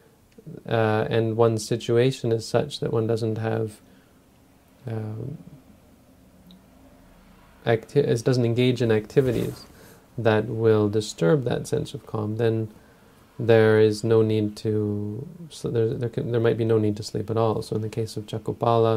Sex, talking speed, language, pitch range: male, 140 wpm, English, 110-130 Hz